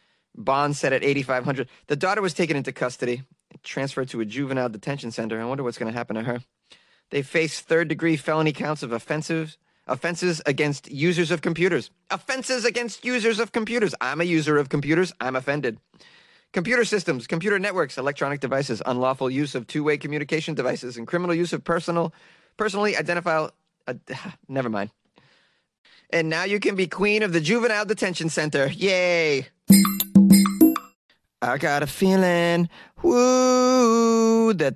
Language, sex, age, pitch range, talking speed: English, male, 30-49, 135-185 Hz, 150 wpm